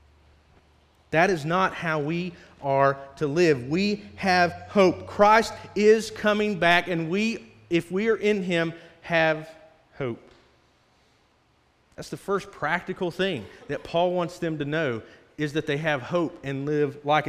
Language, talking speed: English, 150 wpm